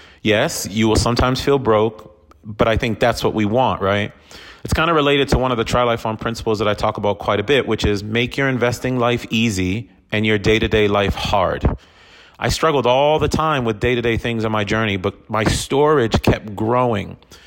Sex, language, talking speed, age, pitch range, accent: male, English, 205 wpm, 30-49, 100-130 Hz, American